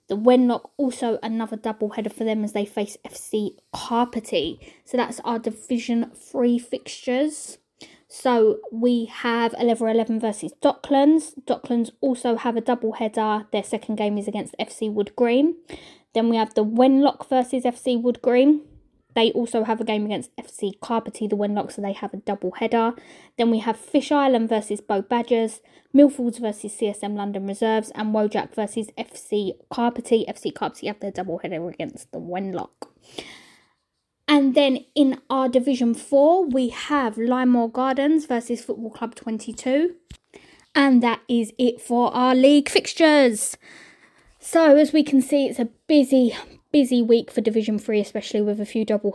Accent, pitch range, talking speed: British, 210-255 Hz, 160 wpm